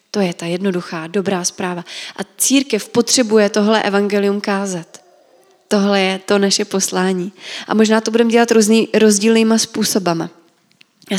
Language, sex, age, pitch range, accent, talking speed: Czech, female, 20-39, 185-220 Hz, native, 140 wpm